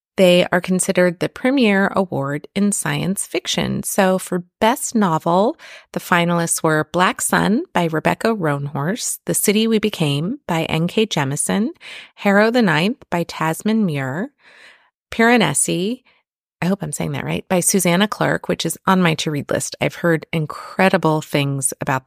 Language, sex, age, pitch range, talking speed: English, female, 30-49, 170-220 Hz, 150 wpm